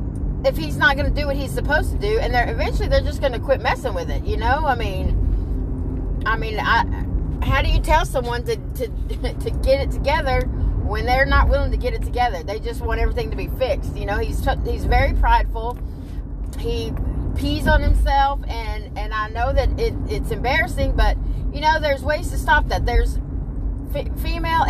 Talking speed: 205 wpm